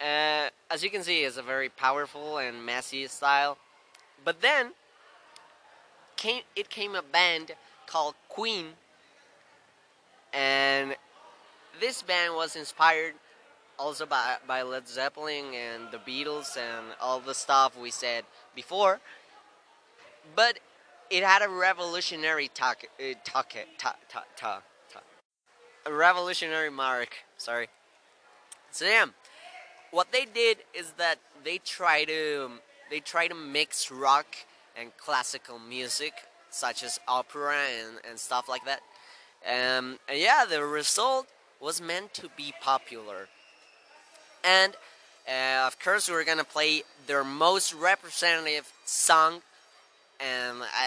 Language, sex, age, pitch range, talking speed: English, male, 20-39, 130-175 Hz, 125 wpm